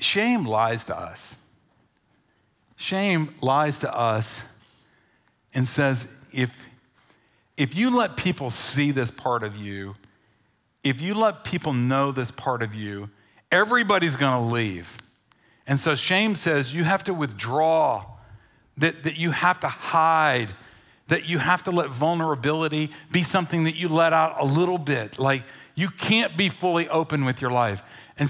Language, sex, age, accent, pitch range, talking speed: English, male, 50-69, American, 115-165 Hz, 150 wpm